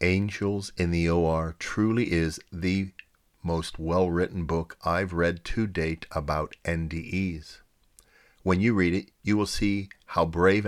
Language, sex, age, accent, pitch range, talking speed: English, male, 50-69, American, 80-105 Hz, 140 wpm